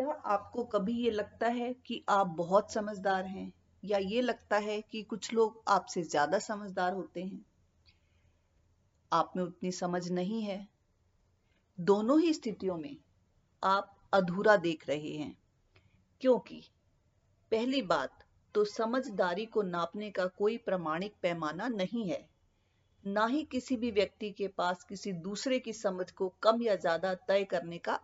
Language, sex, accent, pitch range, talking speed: Hindi, female, native, 170-230 Hz, 145 wpm